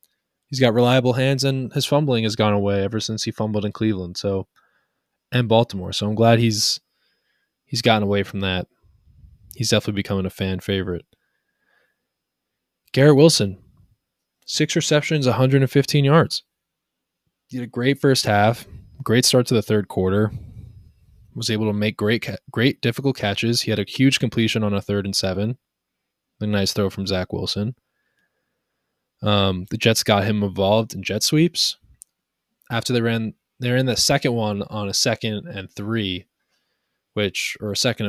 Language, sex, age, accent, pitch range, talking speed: English, male, 20-39, American, 100-120 Hz, 160 wpm